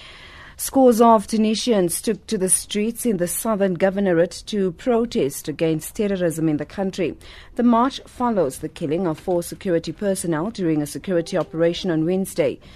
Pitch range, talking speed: 165-215 Hz, 155 wpm